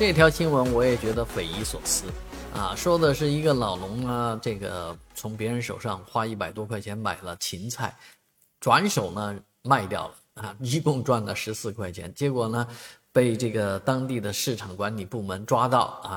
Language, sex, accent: Chinese, male, native